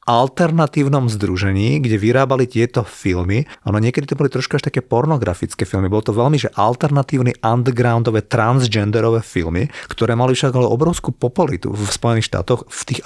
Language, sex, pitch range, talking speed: Slovak, male, 110-130 Hz, 150 wpm